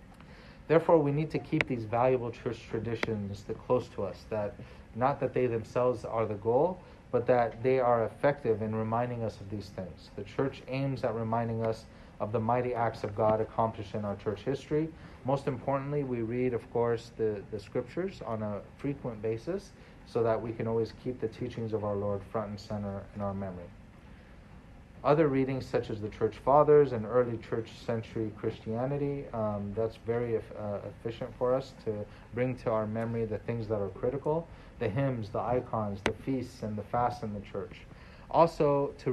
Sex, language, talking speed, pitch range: male, English, 190 wpm, 110-125 Hz